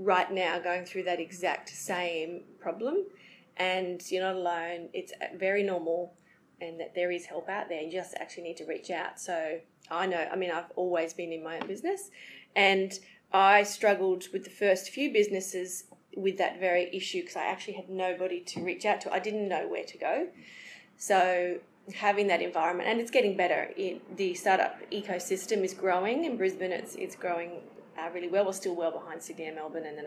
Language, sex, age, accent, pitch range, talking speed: English, female, 30-49, Australian, 175-195 Hz, 195 wpm